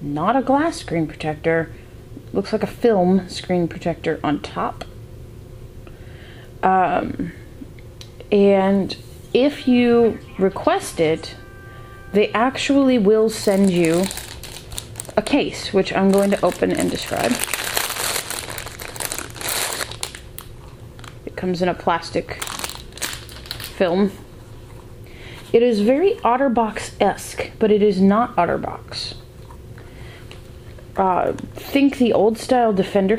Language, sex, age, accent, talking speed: English, female, 30-49, American, 100 wpm